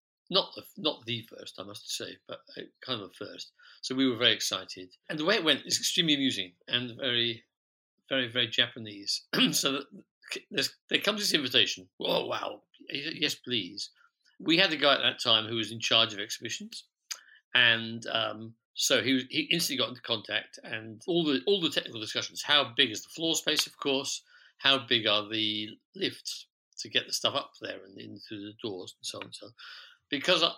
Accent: British